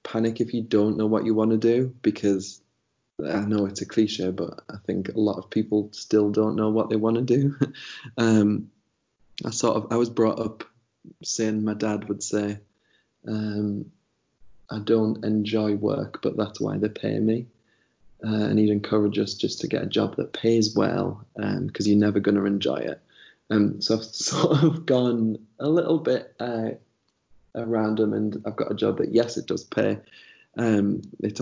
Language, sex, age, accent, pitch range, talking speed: English, male, 20-39, British, 105-115 Hz, 190 wpm